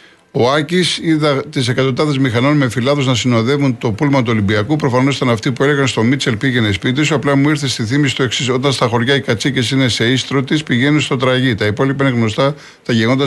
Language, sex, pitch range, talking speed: Greek, male, 115-140 Hz, 220 wpm